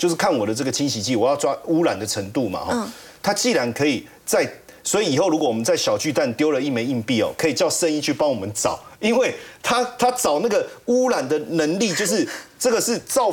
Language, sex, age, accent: Chinese, male, 40-59, native